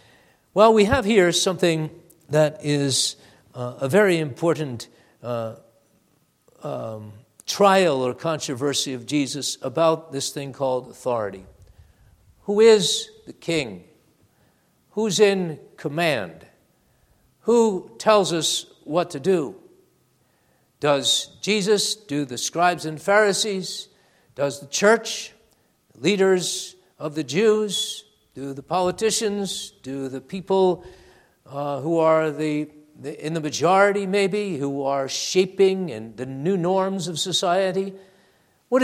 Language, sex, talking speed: English, male, 115 wpm